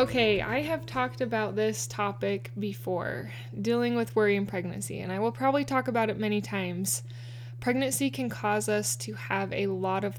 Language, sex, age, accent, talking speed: English, female, 20-39, American, 185 wpm